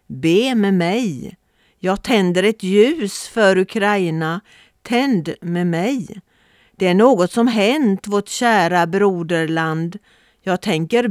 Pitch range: 175-225 Hz